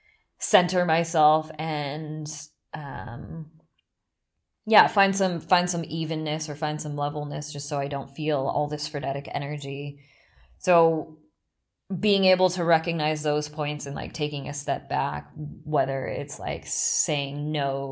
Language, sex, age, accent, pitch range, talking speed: English, female, 20-39, American, 145-170 Hz, 135 wpm